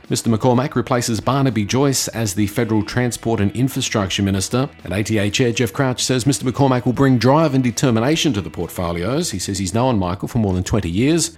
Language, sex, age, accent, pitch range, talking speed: English, male, 40-59, Australian, 100-125 Hz, 200 wpm